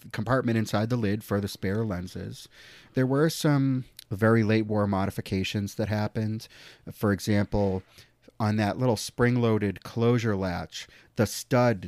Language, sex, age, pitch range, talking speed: English, male, 30-49, 95-115 Hz, 130 wpm